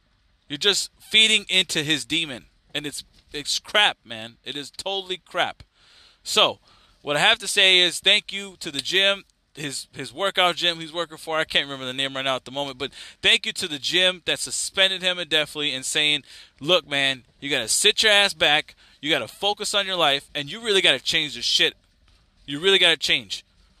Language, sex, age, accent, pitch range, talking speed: English, male, 20-39, American, 130-185 Hz, 205 wpm